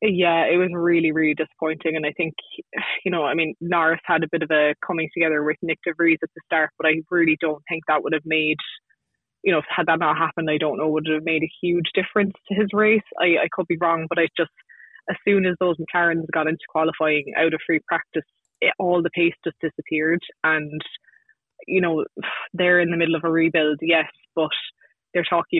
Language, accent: English, Irish